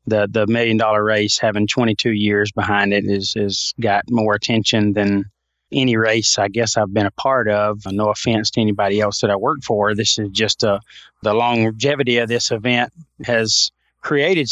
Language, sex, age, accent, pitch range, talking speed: English, male, 30-49, American, 110-125 Hz, 185 wpm